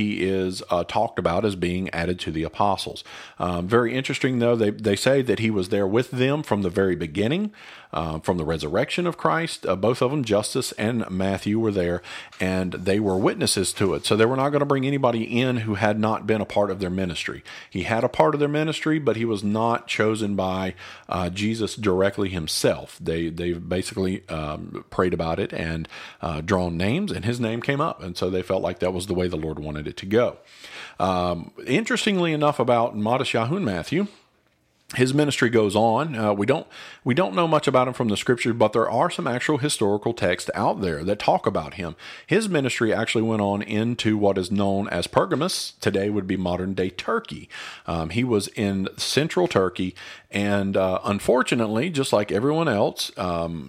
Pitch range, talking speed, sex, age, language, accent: 95-125 Hz, 205 wpm, male, 40-59, English, American